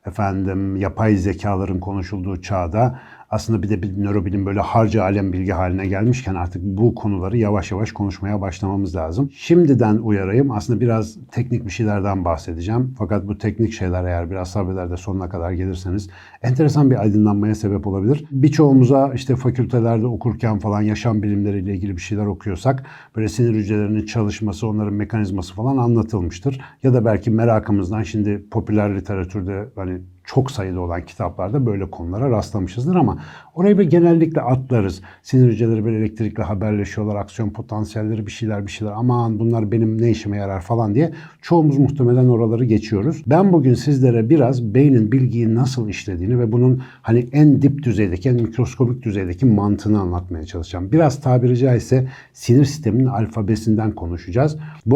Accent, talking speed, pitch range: native, 150 wpm, 100-125 Hz